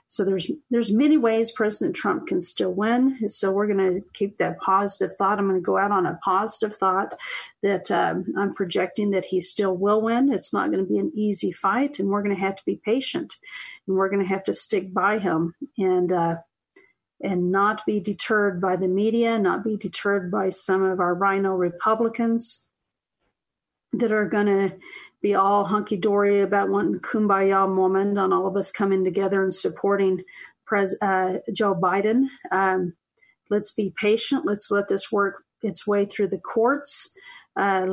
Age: 40-59